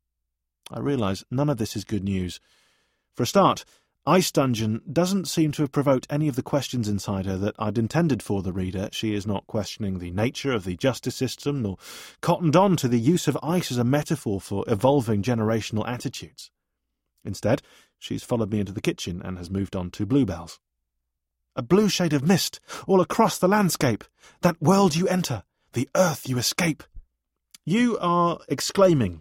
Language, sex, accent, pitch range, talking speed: English, male, British, 95-140 Hz, 180 wpm